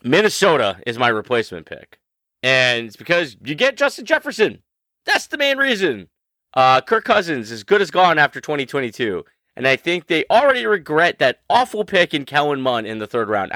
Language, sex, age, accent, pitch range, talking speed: English, male, 30-49, American, 115-180 Hz, 180 wpm